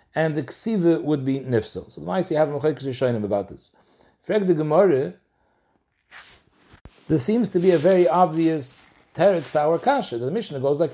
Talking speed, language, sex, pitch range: 180 wpm, English, male, 165-205 Hz